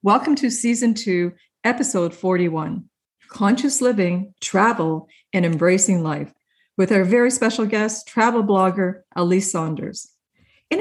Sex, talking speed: female, 120 wpm